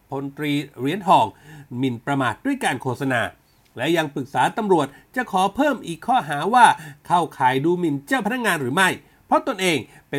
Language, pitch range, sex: Thai, 145-210 Hz, male